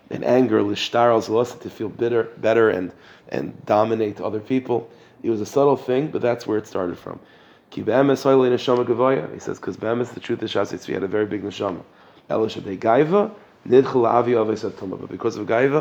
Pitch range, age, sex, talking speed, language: 105-130 Hz, 30-49, male, 190 wpm, English